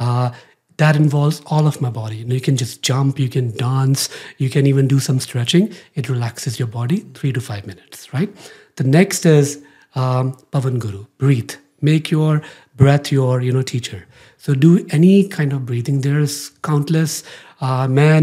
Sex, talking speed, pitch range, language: male, 180 wpm, 125-145 Hz, Hindi